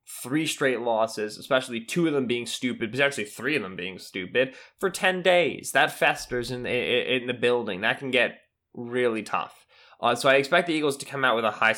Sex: male